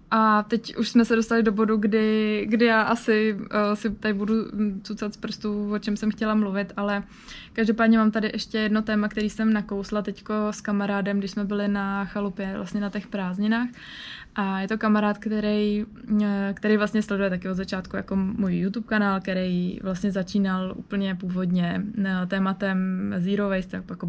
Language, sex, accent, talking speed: Czech, female, native, 170 wpm